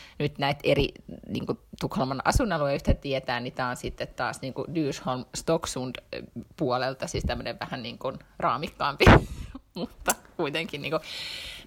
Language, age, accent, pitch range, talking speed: Finnish, 30-49, native, 130-155 Hz, 120 wpm